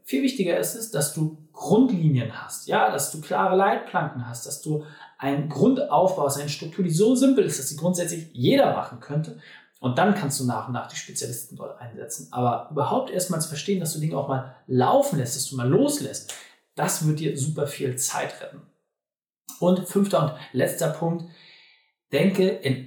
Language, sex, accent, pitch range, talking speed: German, male, German, 135-190 Hz, 185 wpm